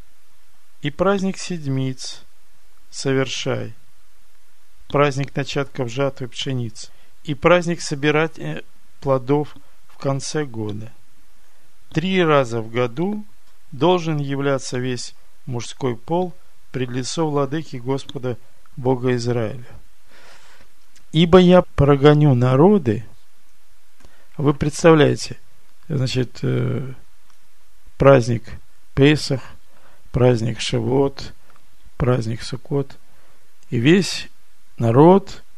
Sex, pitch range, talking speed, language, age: male, 125-150 Hz, 80 wpm, Russian, 50-69